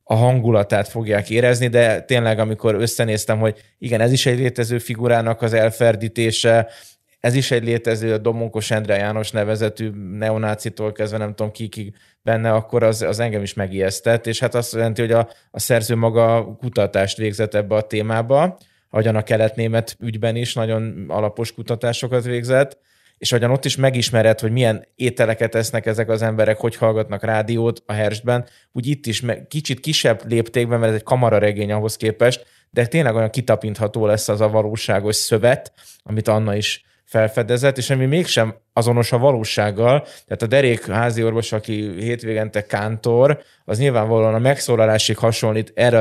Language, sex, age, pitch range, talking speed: Hungarian, male, 20-39, 110-120 Hz, 160 wpm